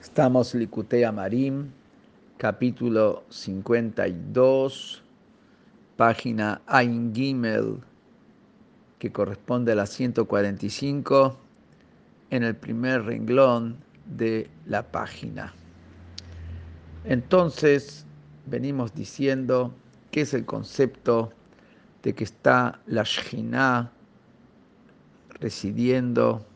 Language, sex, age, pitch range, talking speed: Spanish, male, 50-69, 110-135 Hz, 75 wpm